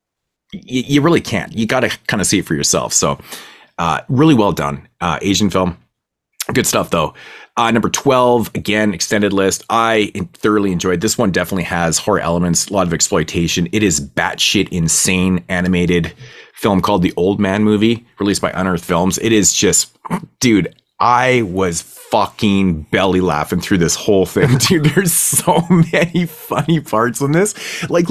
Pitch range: 90-130 Hz